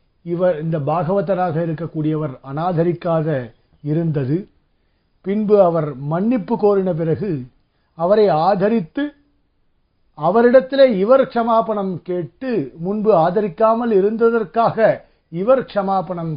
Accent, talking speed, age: native, 80 wpm, 50-69